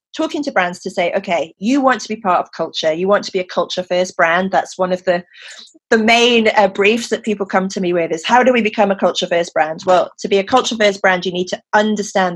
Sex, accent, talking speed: female, British, 265 wpm